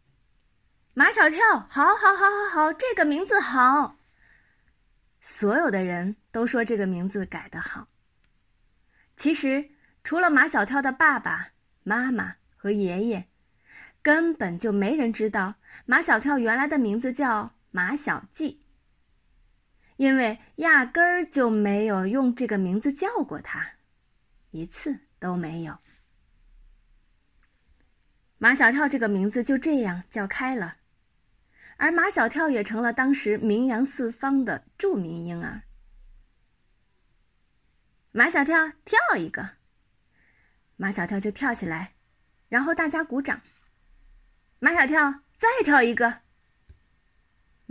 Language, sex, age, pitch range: Chinese, female, 20-39, 205-290 Hz